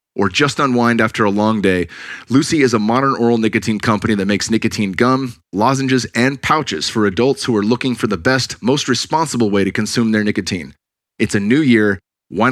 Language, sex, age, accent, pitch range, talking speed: English, male, 30-49, American, 105-130 Hz, 195 wpm